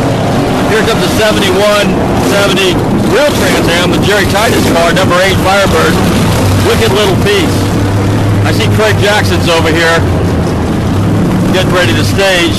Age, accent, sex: 40-59, American, male